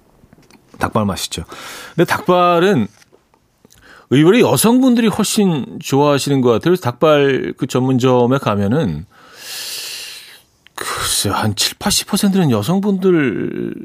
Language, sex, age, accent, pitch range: Korean, male, 40-59, native, 110-175 Hz